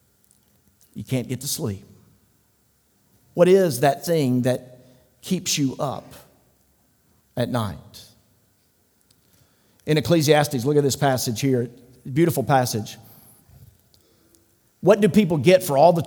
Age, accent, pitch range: 50-69, American, 120-155 Hz